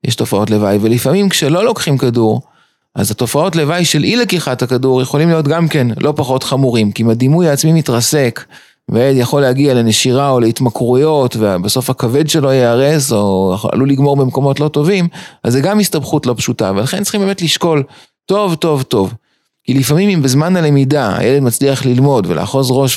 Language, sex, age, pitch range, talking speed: Hebrew, male, 30-49, 115-155 Hz, 165 wpm